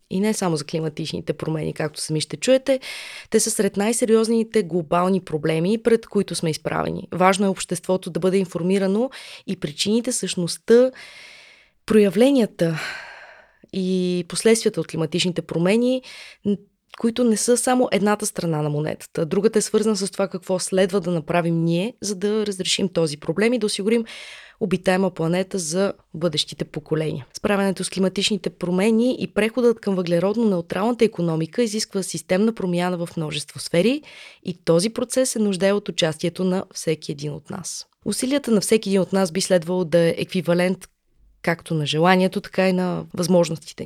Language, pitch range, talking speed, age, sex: Bulgarian, 175-215 Hz, 150 wpm, 20-39, female